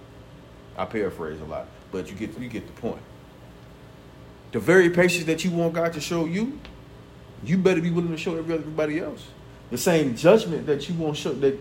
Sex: male